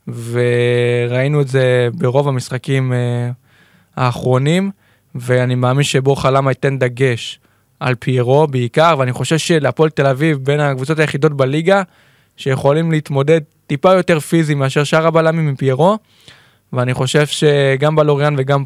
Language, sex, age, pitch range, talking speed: Hebrew, male, 20-39, 130-150 Hz, 125 wpm